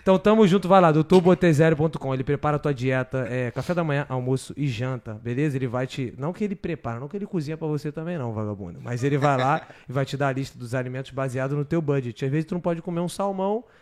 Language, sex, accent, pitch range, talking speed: Portuguese, male, Brazilian, 130-170 Hz, 250 wpm